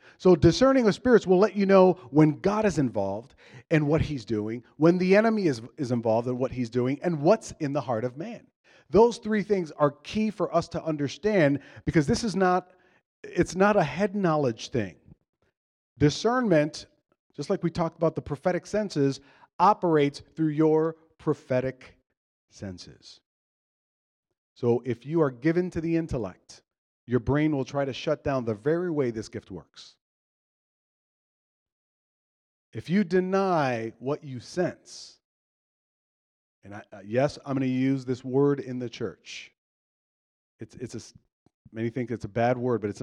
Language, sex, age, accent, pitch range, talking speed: English, male, 40-59, American, 125-170 Hz, 165 wpm